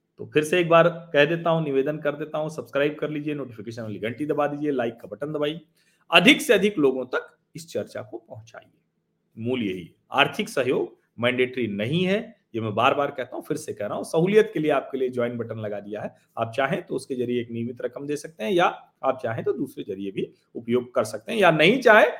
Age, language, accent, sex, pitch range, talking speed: 40-59, Hindi, native, male, 130-175 Hz, 230 wpm